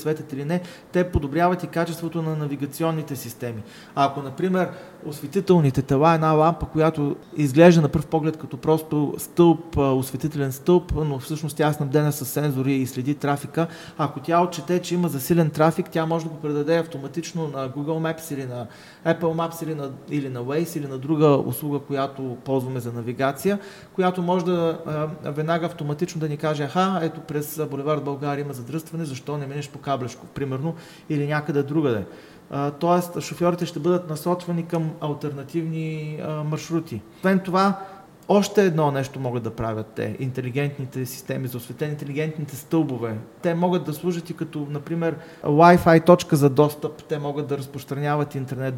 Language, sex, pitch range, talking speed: Bulgarian, male, 140-165 Hz, 165 wpm